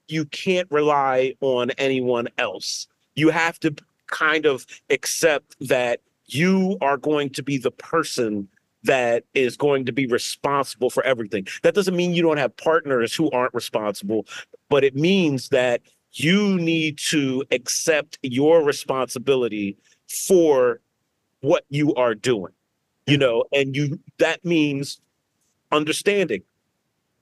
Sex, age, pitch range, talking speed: male, 40-59, 130-170 Hz, 130 wpm